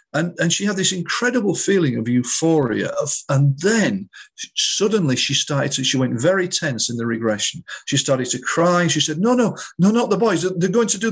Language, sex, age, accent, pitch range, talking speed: English, male, 40-59, British, 115-155 Hz, 215 wpm